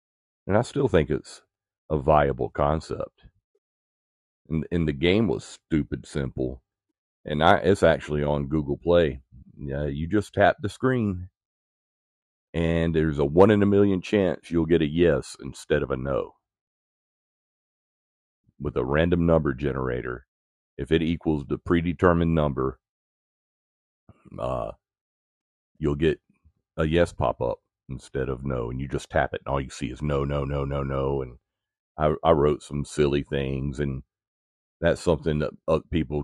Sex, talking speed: male, 150 wpm